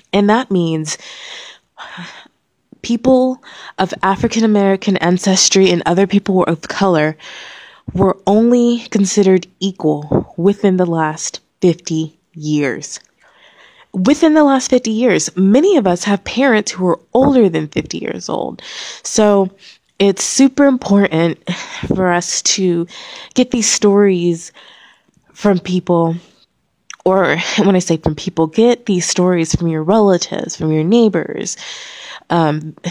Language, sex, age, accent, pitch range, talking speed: English, female, 20-39, American, 170-225 Hz, 120 wpm